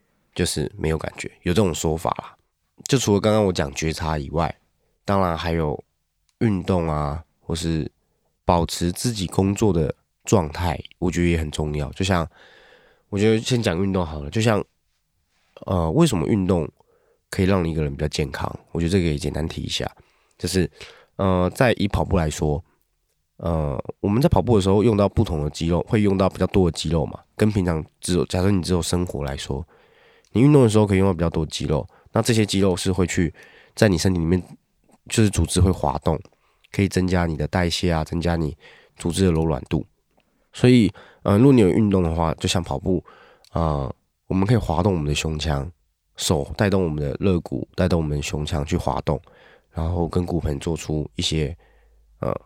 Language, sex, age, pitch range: Chinese, male, 20-39, 80-95 Hz